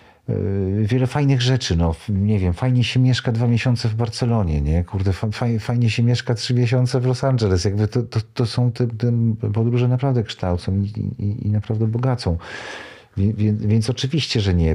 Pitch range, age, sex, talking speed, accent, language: 95-115 Hz, 50-69, male, 180 wpm, native, Polish